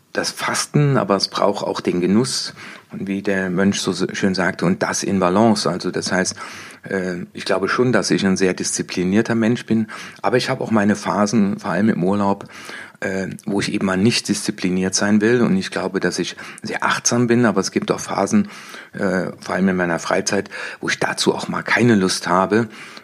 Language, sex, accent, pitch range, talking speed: German, male, German, 95-120 Hz, 200 wpm